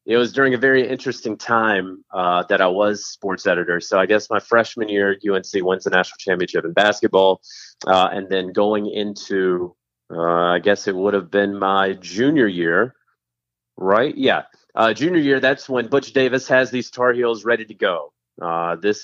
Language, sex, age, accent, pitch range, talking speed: English, male, 30-49, American, 90-120 Hz, 185 wpm